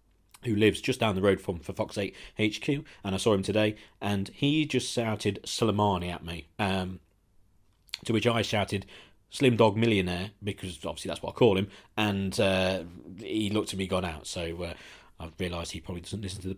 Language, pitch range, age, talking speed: English, 95-110 Hz, 40-59, 205 wpm